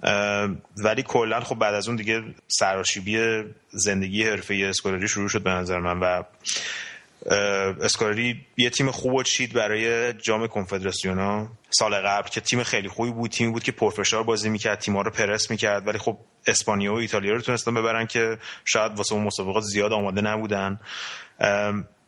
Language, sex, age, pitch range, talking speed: Persian, male, 30-49, 100-115 Hz, 170 wpm